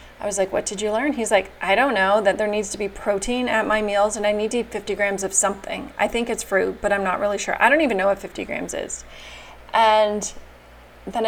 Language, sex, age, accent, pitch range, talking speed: English, female, 30-49, American, 195-230 Hz, 260 wpm